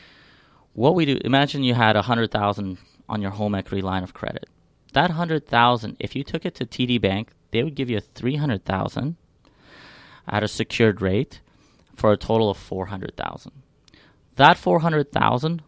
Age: 30-49